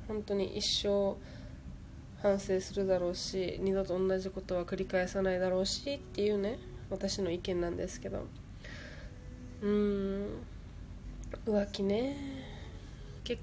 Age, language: 20-39, Japanese